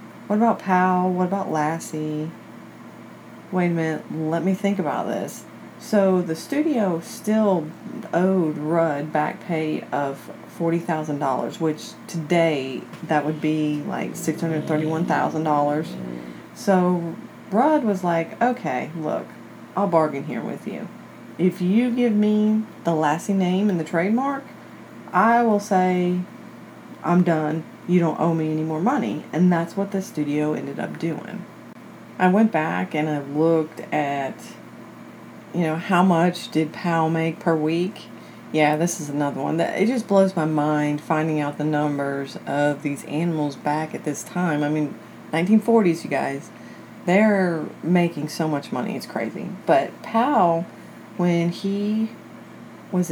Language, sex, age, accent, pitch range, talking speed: English, female, 30-49, American, 155-190 Hz, 145 wpm